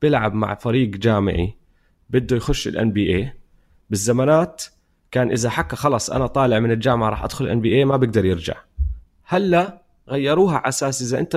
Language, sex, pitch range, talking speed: Arabic, male, 110-150 Hz, 165 wpm